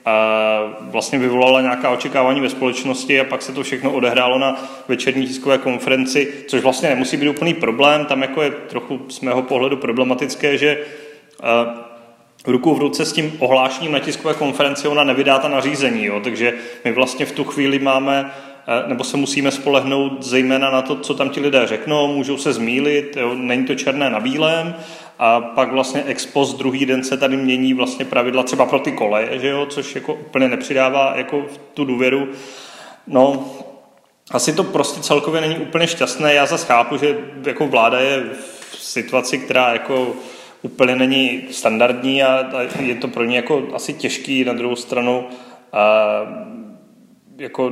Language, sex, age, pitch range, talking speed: Czech, male, 30-49, 125-145 Hz, 160 wpm